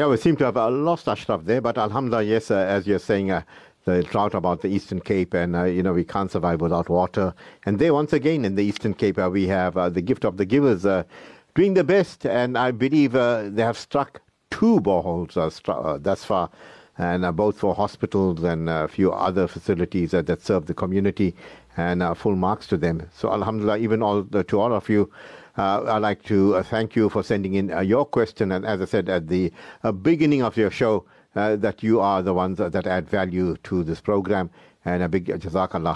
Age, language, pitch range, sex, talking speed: 50-69, English, 90-115 Hz, male, 230 wpm